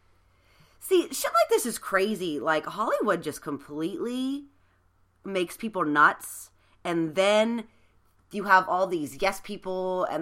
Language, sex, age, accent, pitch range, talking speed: English, female, 30-49, American, 145-205 Hz, 130 wpm